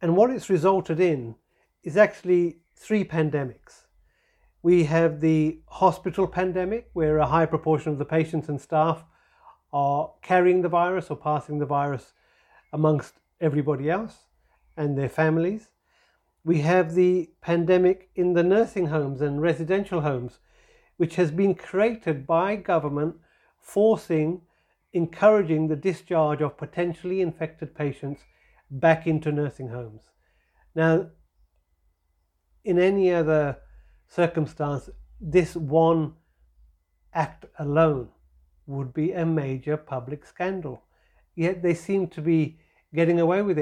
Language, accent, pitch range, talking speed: English, British, 150-180 Hz, 120 wpm